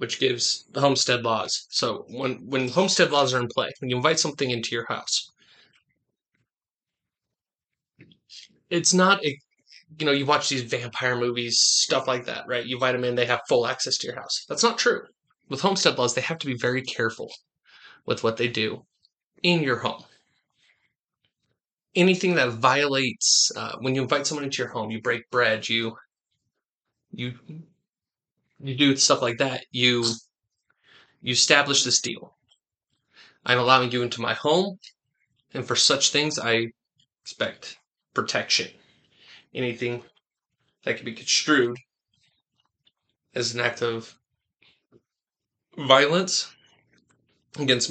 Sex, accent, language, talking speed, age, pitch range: male, American, English, 145 wpm, 20-39, 120-145 Hz